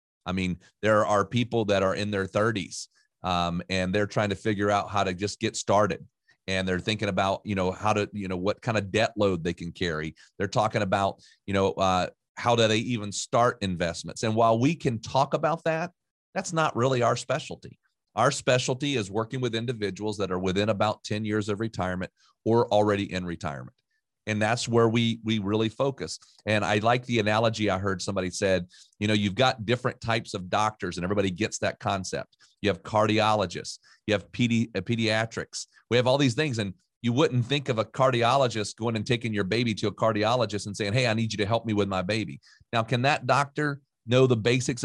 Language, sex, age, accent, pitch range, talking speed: English, male, 40-59, American, 100-120 Hz, 210 wpm